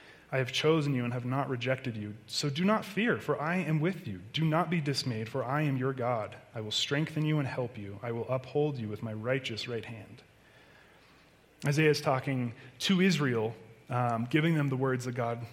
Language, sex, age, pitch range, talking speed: English, male, 30-49, 125-160 Hz, 215 wpm